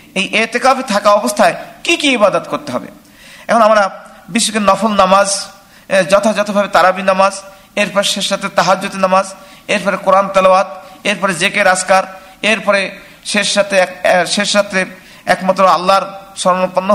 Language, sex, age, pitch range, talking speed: Bengali, male, 50-69, 185-210 Hz, 55 wpm